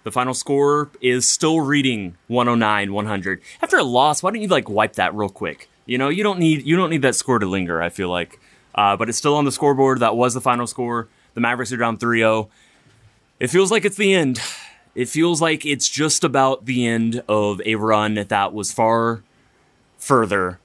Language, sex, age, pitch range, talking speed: English, male, 20-39, 105-140 Hz, 210 wpm